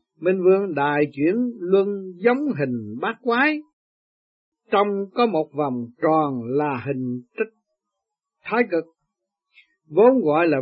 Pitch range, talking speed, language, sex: 150-220 Hz, 125 wpm, Vietnamese, male